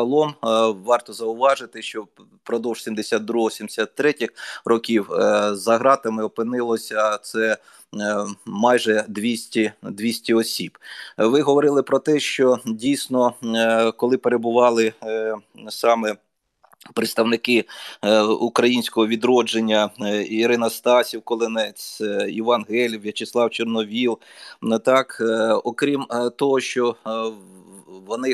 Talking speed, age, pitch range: 80 wpm, 20-39, 110-125 Hz